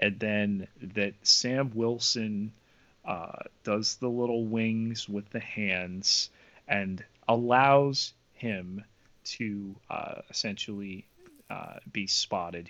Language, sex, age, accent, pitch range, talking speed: English, male, 30-49, American, 105-145 Hz, 105 wpm